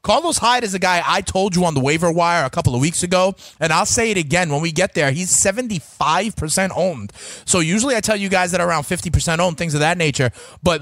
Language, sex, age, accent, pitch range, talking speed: English, male, 30-49, American, 140-190 Hz, 245 wpm